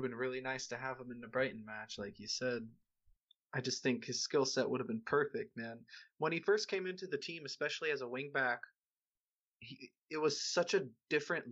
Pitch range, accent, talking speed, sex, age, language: 120-135 Hz, American, 220 wpm, male, 20-39, English